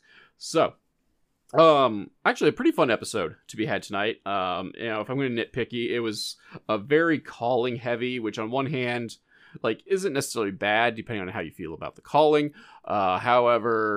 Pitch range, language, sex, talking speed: 95-120 Hz, English, male, 185 wpm